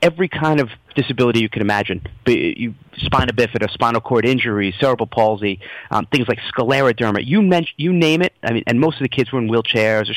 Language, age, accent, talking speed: English, 30-49, American, 200 wpm